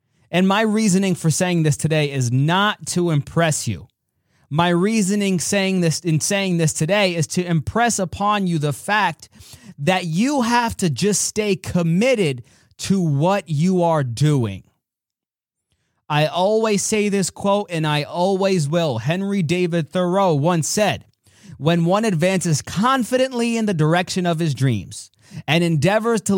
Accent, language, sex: American, English, male